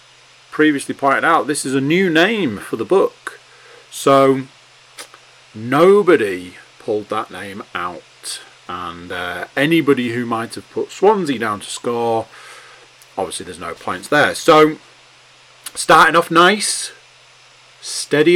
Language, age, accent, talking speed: English, 40-59, British, 125 wpm